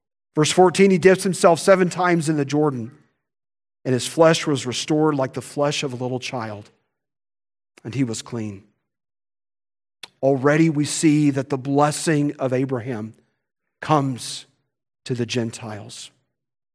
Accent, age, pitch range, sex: American, 40-59, 130-190 Hz, male